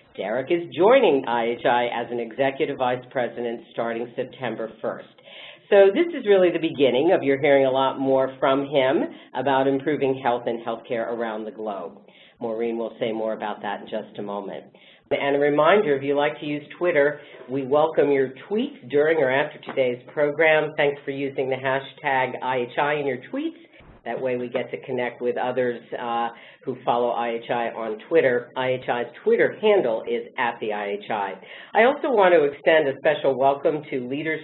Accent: American